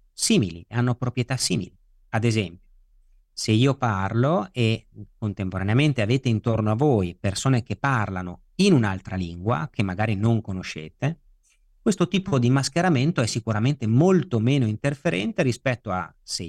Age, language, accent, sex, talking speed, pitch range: 40-59, Italian, native, male, 135 wpm, 100-135 Hz